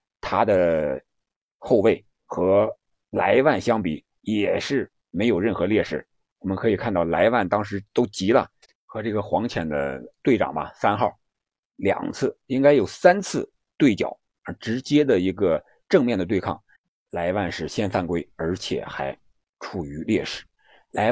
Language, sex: Chinese, male